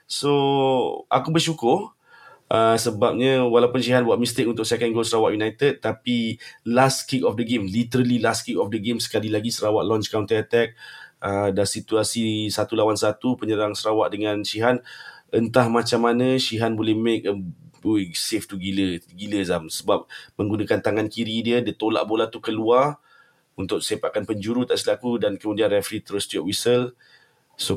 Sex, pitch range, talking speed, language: male, 100-120 Hz, 165 wpm, Malay